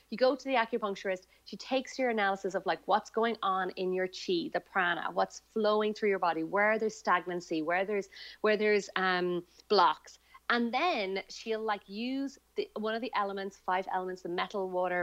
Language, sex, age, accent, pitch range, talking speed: English, female, 30-49, Irish, 185-240 Hz, 190 wpm